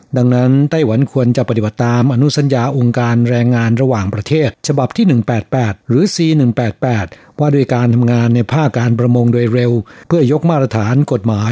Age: 60-79